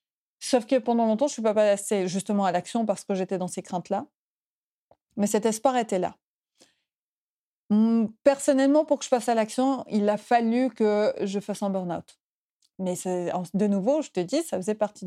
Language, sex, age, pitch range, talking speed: French, female, 30-49, 200-250 Hz, 190 wpm